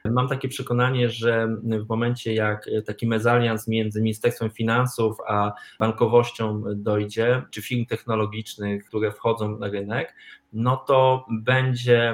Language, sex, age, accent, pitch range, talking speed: Polish, male, 20-39, native, 110-125 Hz, 125 wpm